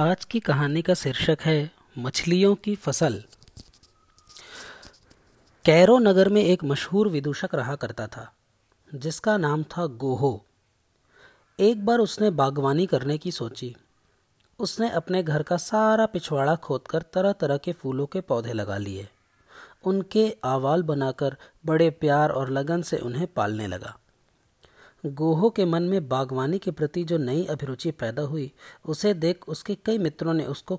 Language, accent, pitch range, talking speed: Hindi, native, 130-180 Hz, 145 wpm